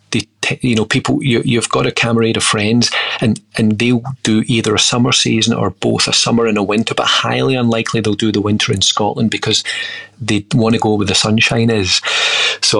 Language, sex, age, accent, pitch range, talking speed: English, male, 40-59, British, 105-120 Hz, 200 wpm